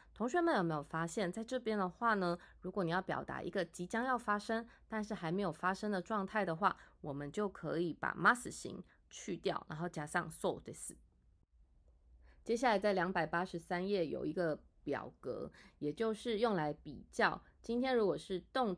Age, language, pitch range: 20-39, Japanese, 165-220 Hz